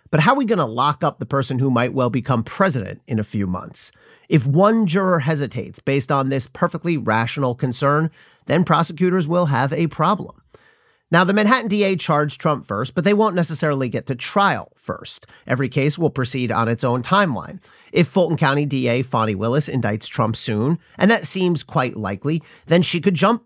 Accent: American